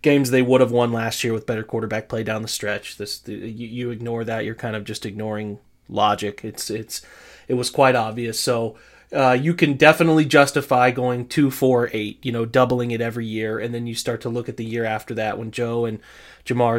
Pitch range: 120-150 Hz